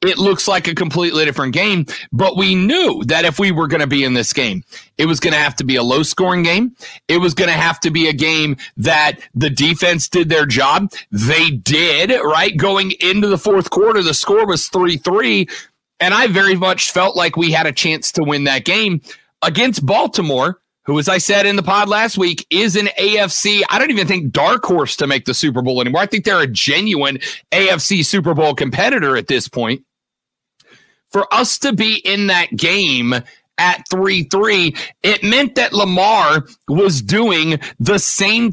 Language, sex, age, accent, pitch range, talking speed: English, male, 40-59, American, 155-200 Hz, 200 wpm